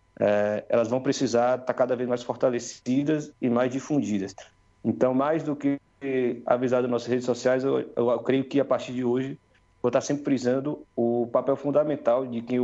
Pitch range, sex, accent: 120-145 Hz, male, Brazilian